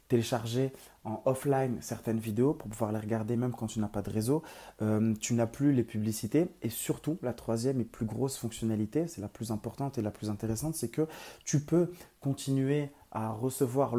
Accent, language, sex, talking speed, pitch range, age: French, French, male, 195 wpm, 115-145 Hz, 30-49